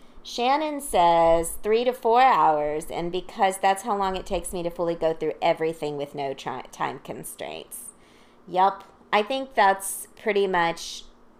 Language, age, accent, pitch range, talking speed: English, 40-59, American, 170-215 Hz, 155 wpm